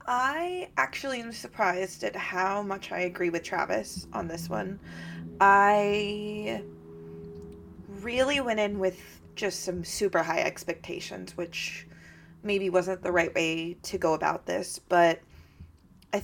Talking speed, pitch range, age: 135 wpm, 170-200 Hz, 20-39